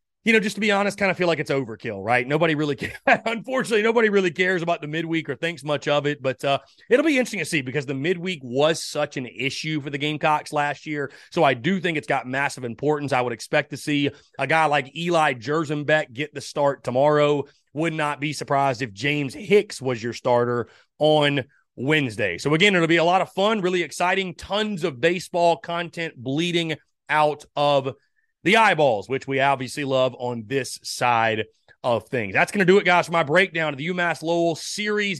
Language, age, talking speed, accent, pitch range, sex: English, 30-49, 210 wpm, American, 140-200 Hz, male